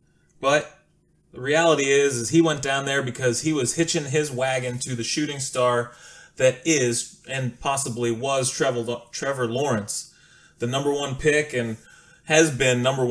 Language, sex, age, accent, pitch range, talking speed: English, male, 20-39, American, 120-150 Hz, 155 wpm